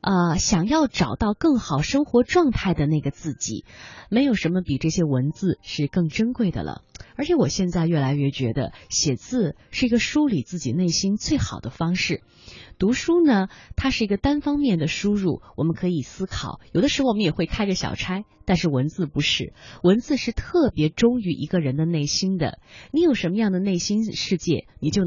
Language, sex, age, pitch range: Chinese, female, 20-39, 155-225 Hz